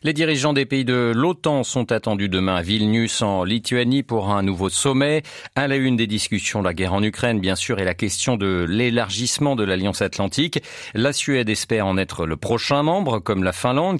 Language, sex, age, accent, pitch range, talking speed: French, male, 40-59, French, 100-130 Hz, 200 wpm